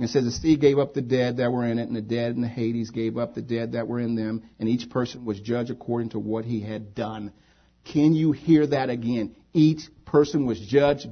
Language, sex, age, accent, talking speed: English, male, 50-69, American, 250 wpm